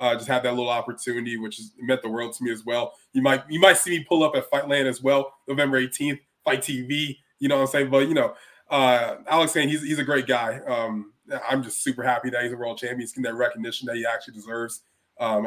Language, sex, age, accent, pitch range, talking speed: English, male, 20-39, American, 120-145 Hz, 255 wpm